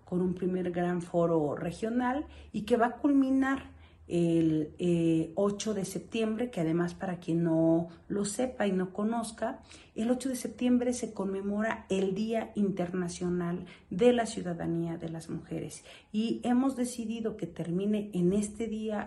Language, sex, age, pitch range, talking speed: Spanish, female, 40-59, 175-220 Hz, 155 wpm